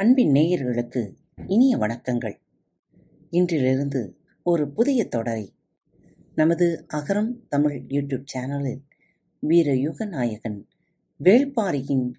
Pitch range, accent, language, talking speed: 130-195 Hz, native, Tamil, 80 wpm